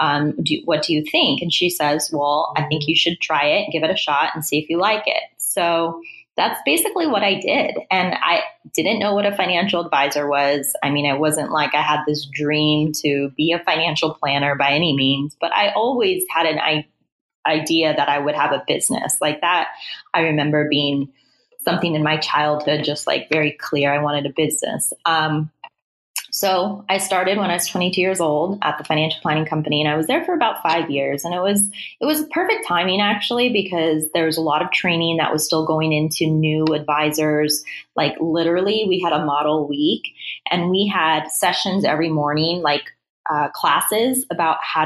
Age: 20-39